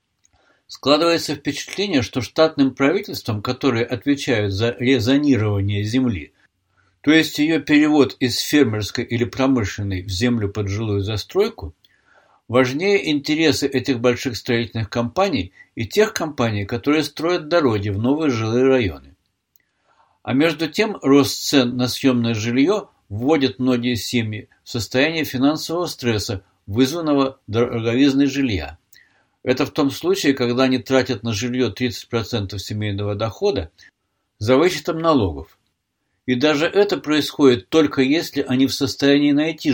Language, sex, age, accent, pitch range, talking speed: Russian, male, 60-79, native, 110-145 Hz, 125 wpm